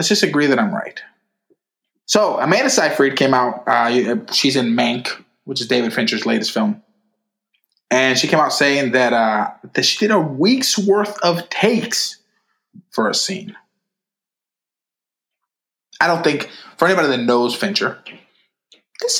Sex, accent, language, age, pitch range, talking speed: male, American, English, 20-39, 125-205 Hz, 150 wpm